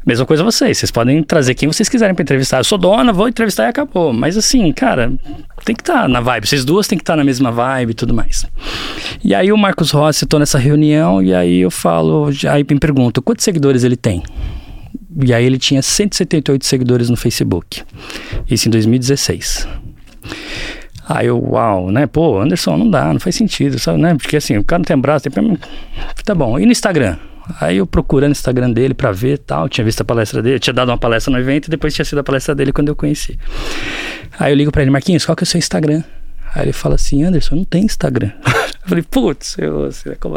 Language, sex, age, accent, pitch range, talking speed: Portuguese, male, 20-39, Brazilian, 115-155 Hz, 225 wpm